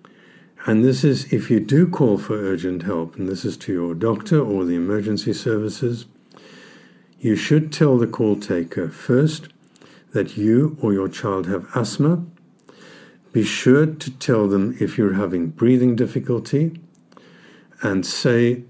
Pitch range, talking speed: 100-130 Hz, 150 wpm